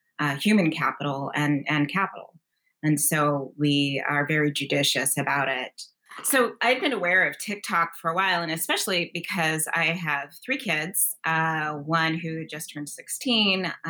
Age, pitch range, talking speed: 20-39, 155-195 Hz, 155 wpm